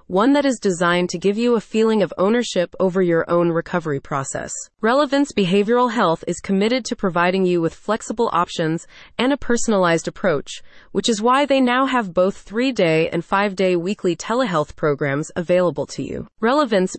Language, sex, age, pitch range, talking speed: English, female, 30-49, 170-235 Hz, 170 wpm